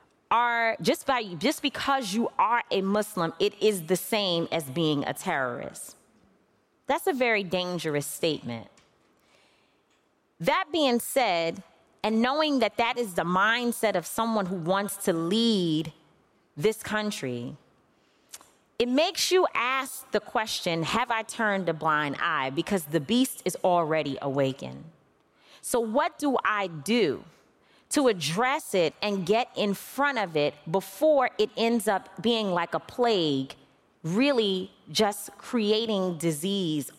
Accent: American